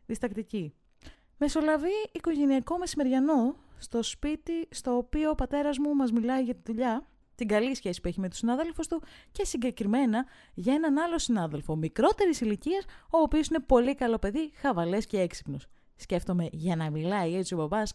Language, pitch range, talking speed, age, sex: Greek, 195-300 Hz, 165 wpm, 20-39, female